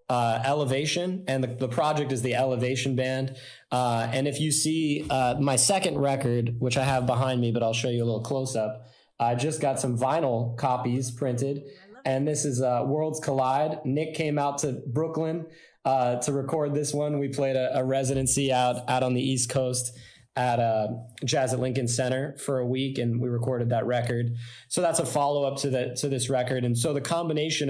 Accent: American